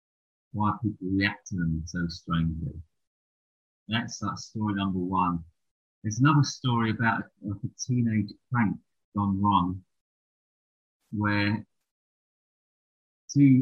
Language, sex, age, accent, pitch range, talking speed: English, male, 30-49, British, 90-110 Hz, 105 wpm